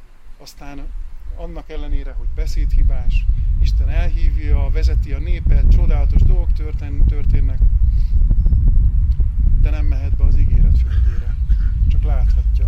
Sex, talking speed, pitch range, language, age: male, 105 wpm, 75-105 Hz, Hungarian, 30-49